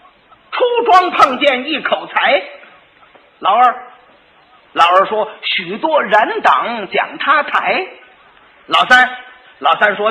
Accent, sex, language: native, male, Chinese